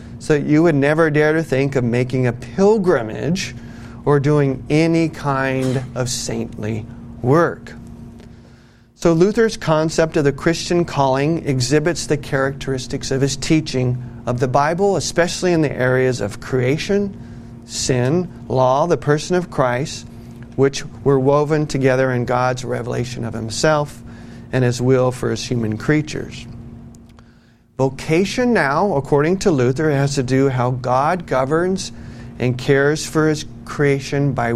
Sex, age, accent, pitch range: male, 40-59, American, 120-155 Hz